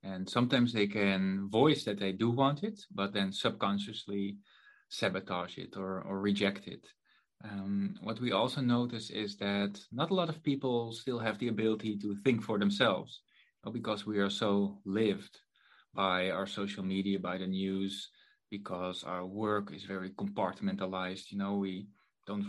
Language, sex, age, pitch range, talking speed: English, male, 20-39, 100-115 Hz, 170 wpm